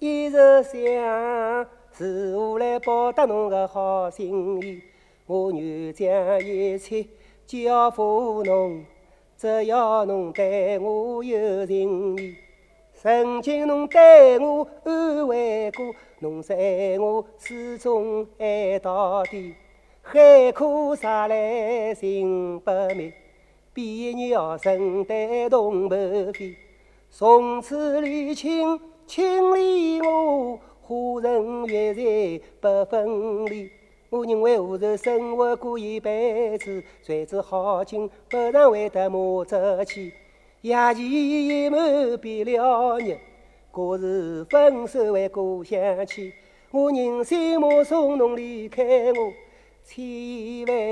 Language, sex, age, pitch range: Chinese, male, 40-59, 195-245 Hz